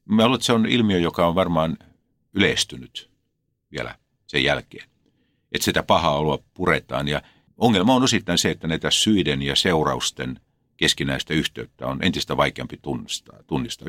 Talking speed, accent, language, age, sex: 140 wpm, native, Finnish, 50-69, male